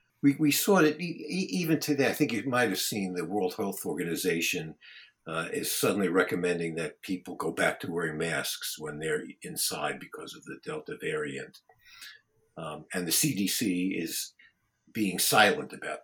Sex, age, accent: male, 60-79, American